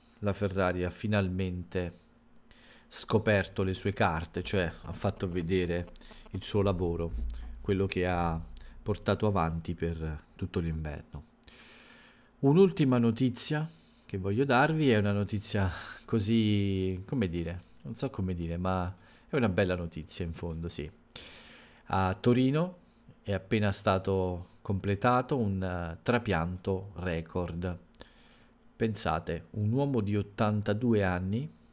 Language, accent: Italian, native